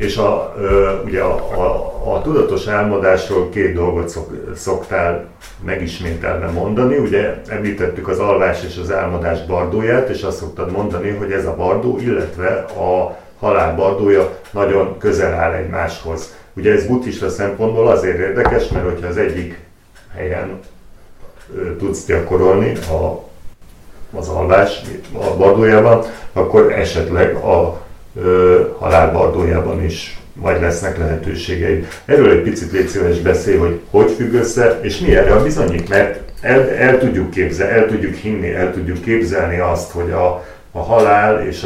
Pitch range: 85-105 Hz